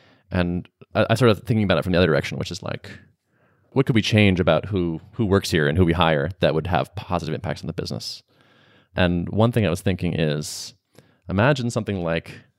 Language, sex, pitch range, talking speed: English, male, 85-110 Hz, 210 wpm